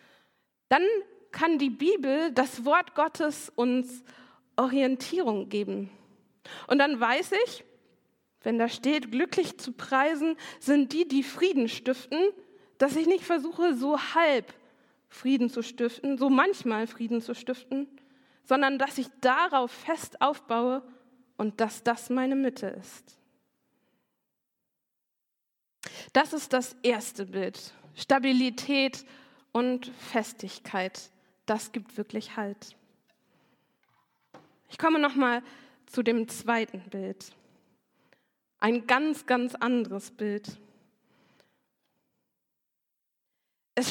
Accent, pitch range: German, 235-285 Hz